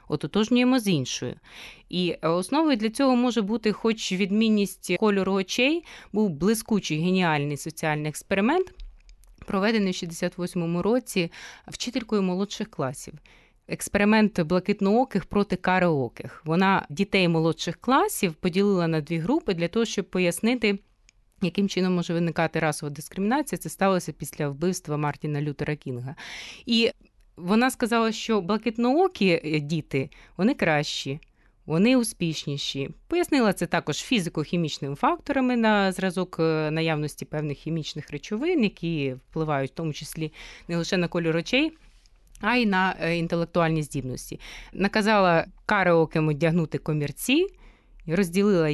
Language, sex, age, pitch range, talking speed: Ukrainian, female, 20-39, 155-210 Hz, 115 wpm